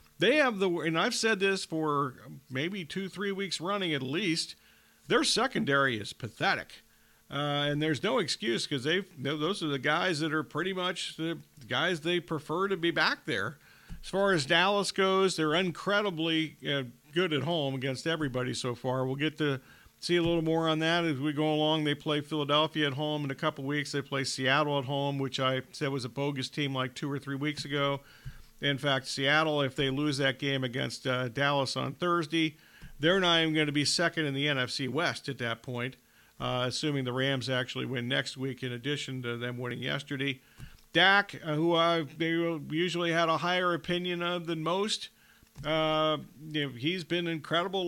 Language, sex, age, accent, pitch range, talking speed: English, male, 40-59, American, 140-170 Hz, 195 wpm